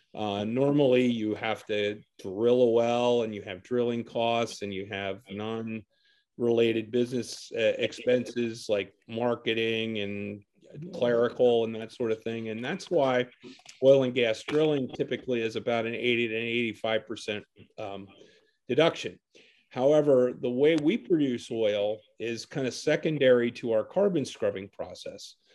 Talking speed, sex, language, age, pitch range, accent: 140 wpm, male, English, 40-59, 115-150 Hz, American